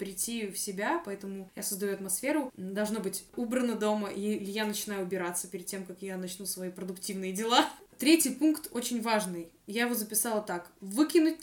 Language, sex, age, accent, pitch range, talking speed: Russian, female, 20-39, native, 195-250 Hz, 170 wpm